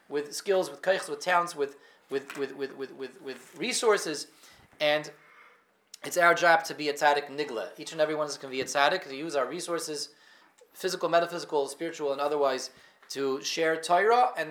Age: 30-49